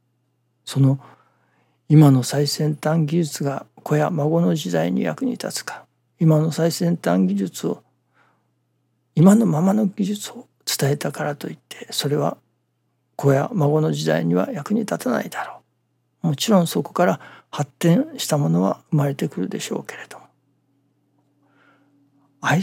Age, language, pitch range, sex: 60-79, Japanese, 125-175 Hz, male